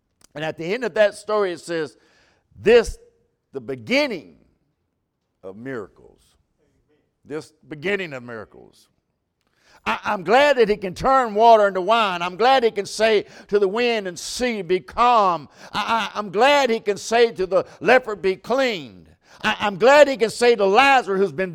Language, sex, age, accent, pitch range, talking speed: English, male, 60-79, American, 175-230 Hz, 175 wpm